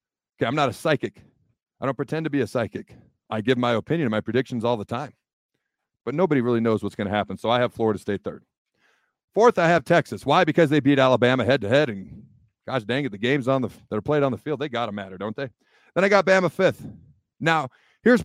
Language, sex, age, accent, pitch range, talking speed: English, male, 40-59, American, 120-175 Hz, 240 wpm